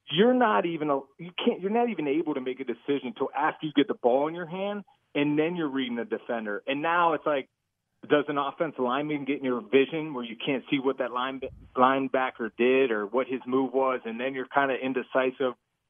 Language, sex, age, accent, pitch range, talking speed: English, male, 30-49, American, 130-170 Hz, 230 wpm